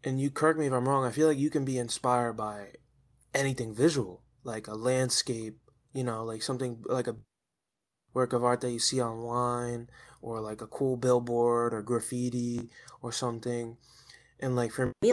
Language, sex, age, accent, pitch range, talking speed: English, male, 20-39, American, 120-145 Hz, 185 wpm